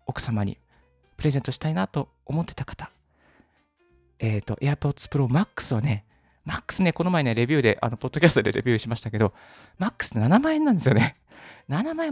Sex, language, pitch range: male, Japanese, 110-150 Hz